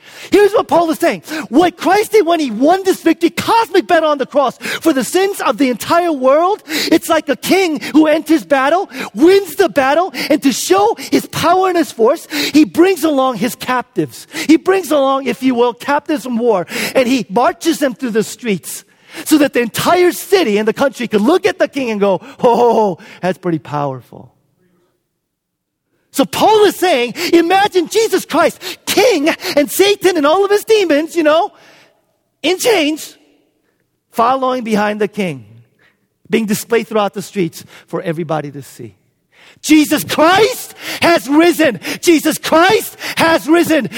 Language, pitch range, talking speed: English, 210-340 Hz, 170 wpm